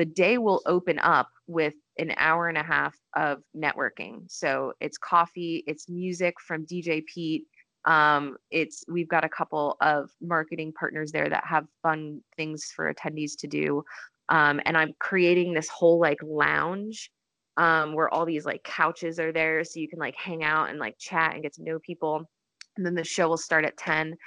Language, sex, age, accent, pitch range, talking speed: English, female, 20-39, American, 155-180 Hz, 190 wpm